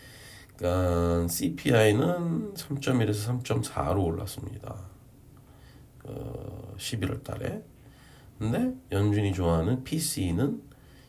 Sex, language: male, Korean